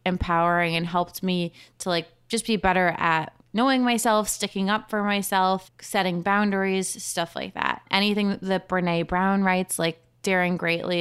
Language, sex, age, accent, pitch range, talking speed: English, female, 20-39, American, 175-215 Hz, 160 wpm